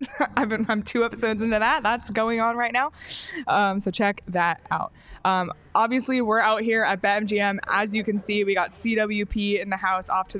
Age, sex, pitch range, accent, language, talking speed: 20-39, female, 190-240 Hz, American, English, 215 wpm